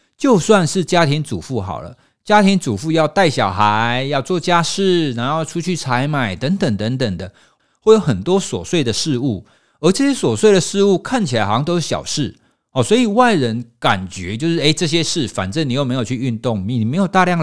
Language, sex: Chinese, male